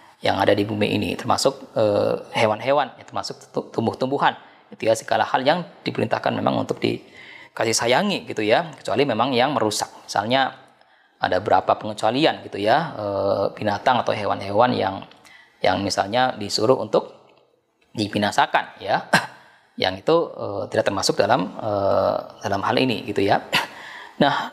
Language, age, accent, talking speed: Indonesian, 20-39, native, 140 wpm